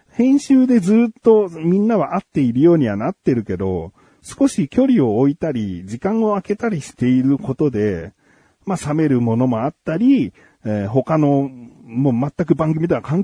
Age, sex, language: 40-59, male, Japanese